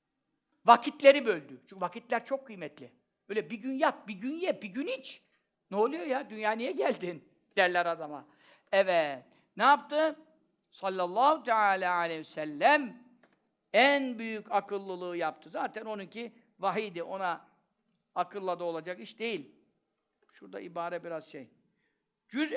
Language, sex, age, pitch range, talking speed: Turkish, male, 60-79, 210-285 Hz, 135 wpm